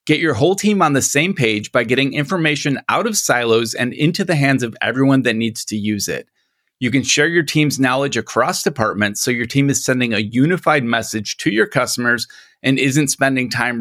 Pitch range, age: 115-150 Hz, 30-49